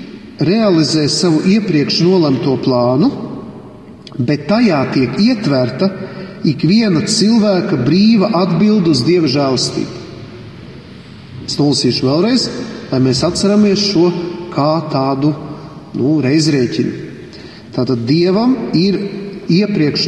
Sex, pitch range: male, 140-190 Hz